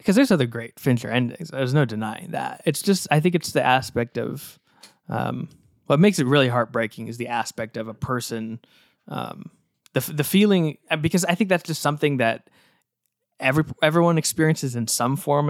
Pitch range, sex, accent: 115-150 Hz, male, American